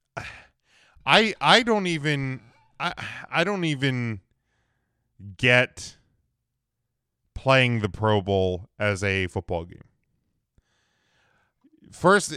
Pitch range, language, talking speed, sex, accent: 100-130 Hz, English, 85 wpm, male, American